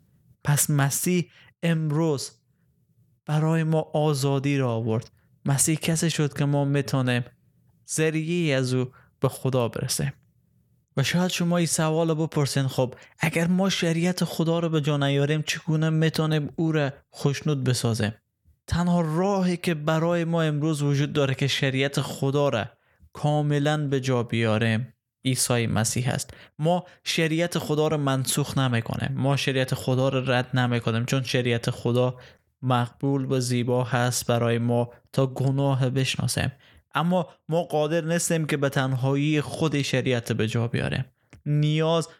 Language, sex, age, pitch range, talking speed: Persian, male, 20-39, 130-160 Hz, 140 wpm